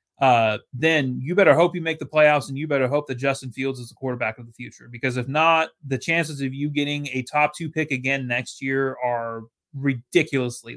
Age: 30-49